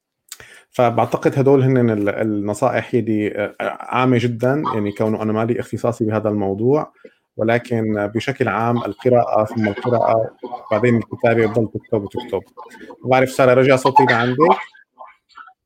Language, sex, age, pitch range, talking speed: Arabic, male, 30-49, 110-130 Hz, 115 wpm